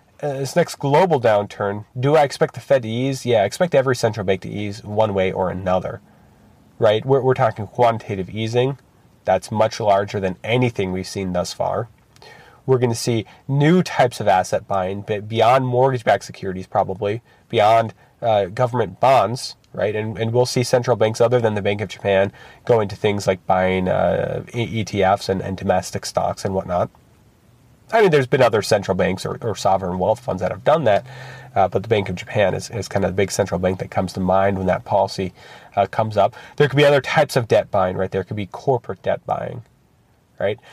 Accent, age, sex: American, 30-49, male